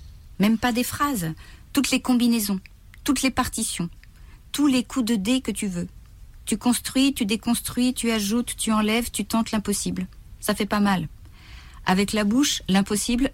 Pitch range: 150-230 Hz